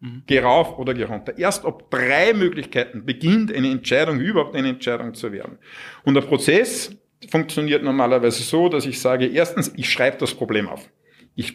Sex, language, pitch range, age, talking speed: male, German, 135-200 Hz, 50-69, 165 wpm